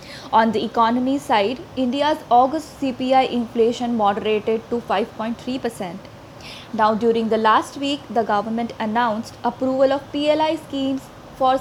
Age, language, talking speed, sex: 20-39, English, 125 wpm, female